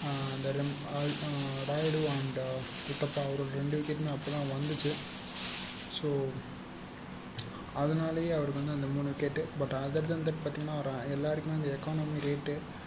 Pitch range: 140-150 Hz